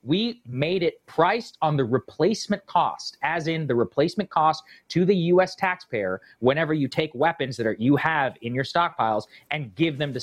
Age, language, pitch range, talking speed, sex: 30-49, English, 125-180 Hz, 190 wpm, male